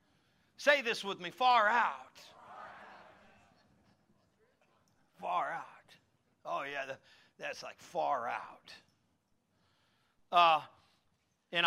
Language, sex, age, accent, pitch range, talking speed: English, male, 50-69, American, 140-170 Hz, 80 wpm